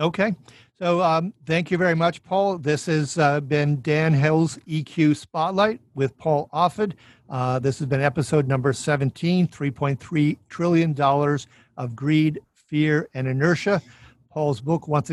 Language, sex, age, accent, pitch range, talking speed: English, male, 50-69, American, 140-165 Hz, 145 wpm